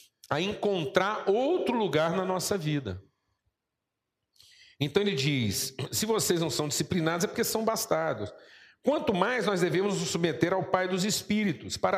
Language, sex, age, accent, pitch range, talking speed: Portuguese, male, 50-69, Brazilian, 135-195 Hz, 150 wpm